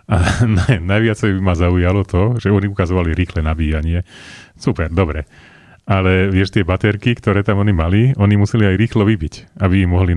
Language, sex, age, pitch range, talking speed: Slovak, male, 30-49, 90-105 Hz, 185 wpm